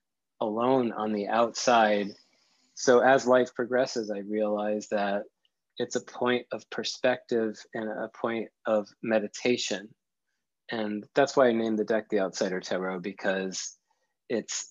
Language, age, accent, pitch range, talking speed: English, 30-49, American, 105-125 Hz, 135 wpm